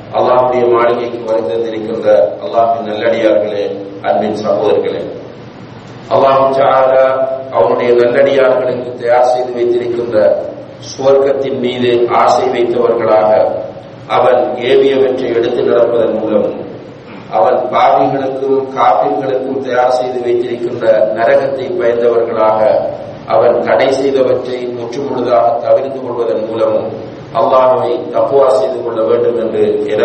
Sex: male